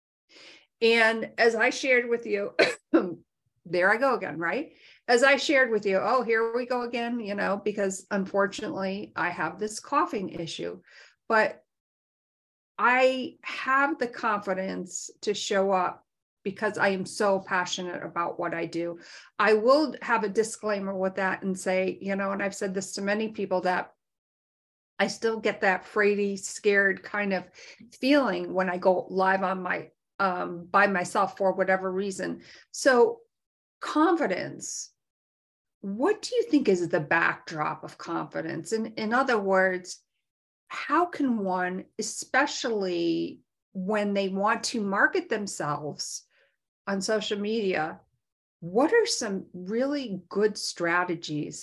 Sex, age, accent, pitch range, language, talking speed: female, 50-69, American, 180-225 Hz, English, 140 wpm